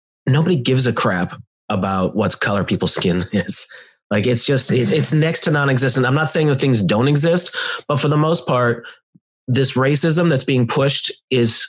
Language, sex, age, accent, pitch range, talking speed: English, male, 30-49, American, 105-140 Hz, 185 wpm